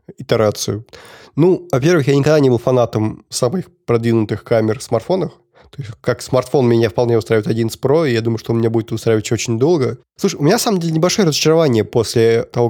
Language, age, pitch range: Russian, 20-39, 115-145 Hz